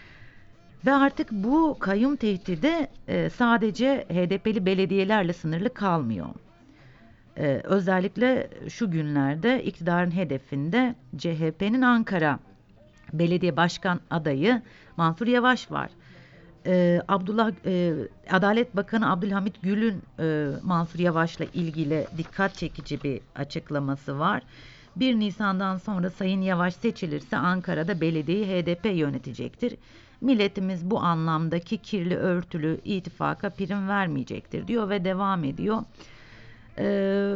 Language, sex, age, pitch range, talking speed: German, female, 50-69, 155-200 Hz, 95 wpm